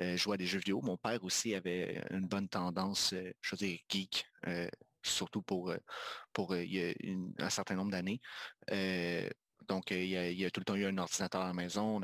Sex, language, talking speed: male, French, 225 wpm